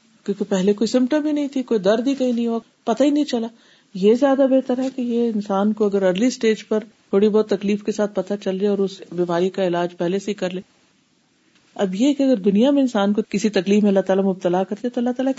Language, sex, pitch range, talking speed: Urdu, female, 200-260 Hz, 255 wpm